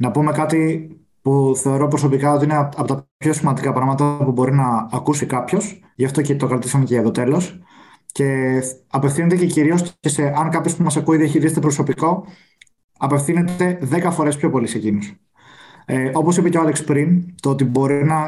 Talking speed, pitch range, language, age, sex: 195 wpm, 135-170 Hz, Greek, 20-39, male